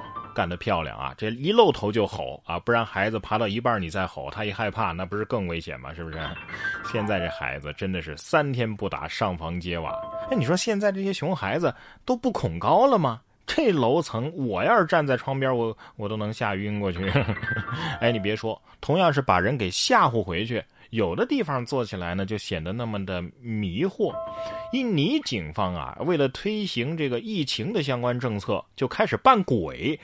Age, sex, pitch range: 20-39, male, 95-150 Hz